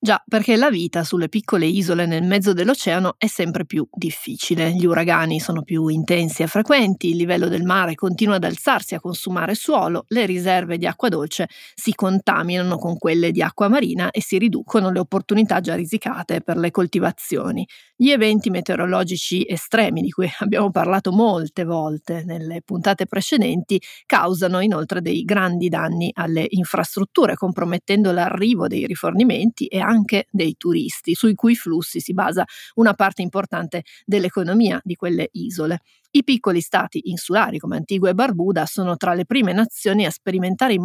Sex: female